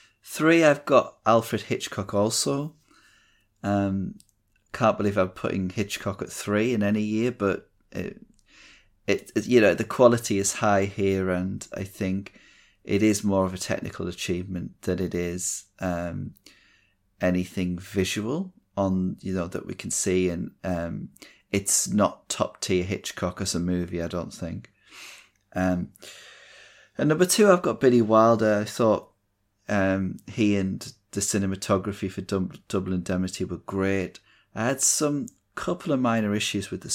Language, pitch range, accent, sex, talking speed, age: English, 90-105 Hz, British, male, 150 wpm, 30-49